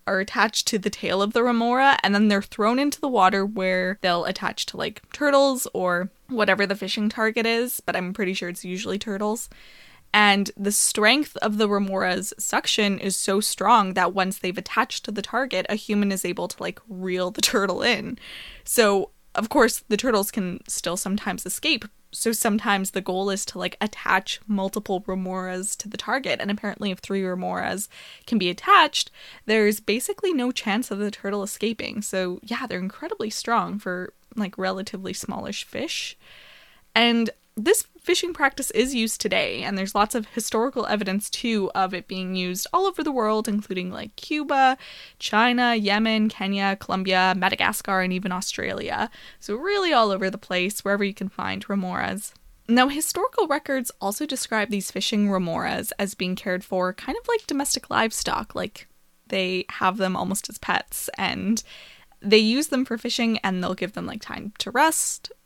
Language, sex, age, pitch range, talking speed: English, female, 20-39, 190-235 Hz, 175 wpm